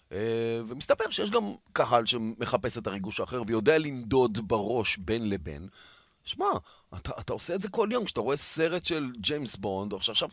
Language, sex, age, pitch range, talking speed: Hebrew, male, 30-49, 110-165 Hz, 170 wpm